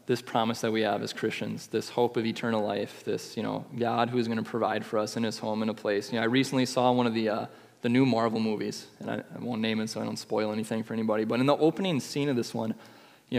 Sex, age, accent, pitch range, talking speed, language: male, 20-39, American, 115-125 Hz, 285 wpm, English